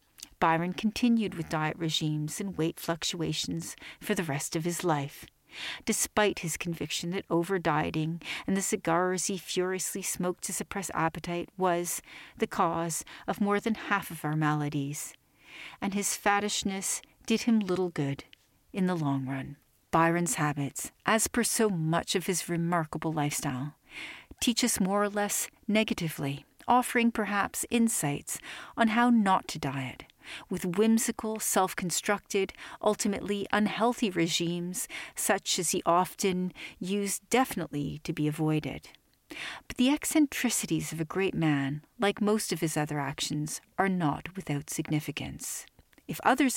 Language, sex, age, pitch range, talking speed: English, female, 40-59, 155-205 Hz, 140 wpm